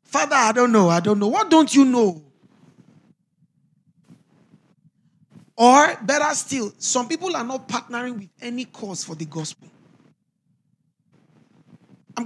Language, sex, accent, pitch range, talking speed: English, male, Nigerian, 165-230 Hz, 125 wpm